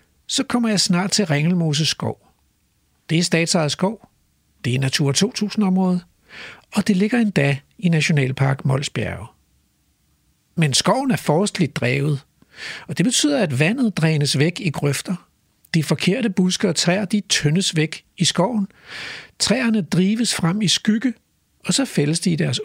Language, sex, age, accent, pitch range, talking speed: Danish, male, 60-79, native, 145-205 Hz, 150 wpm